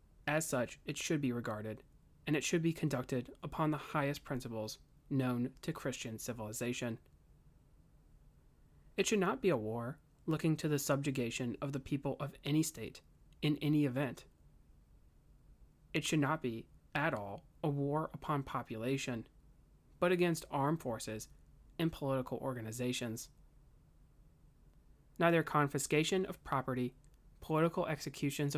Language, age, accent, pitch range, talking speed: English, 30-49, American, 130-160 Hz, 130 wpm